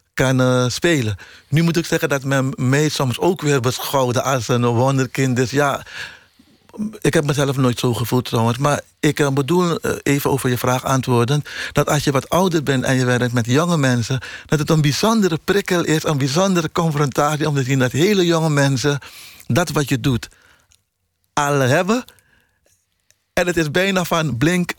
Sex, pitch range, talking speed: male, 120-155 Hz, 180 wpm